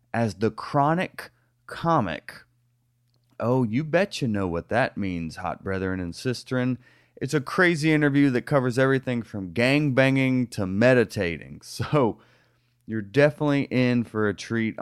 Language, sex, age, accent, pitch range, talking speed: English, male, 30-49, American, 105-125 Hz, 140 wpm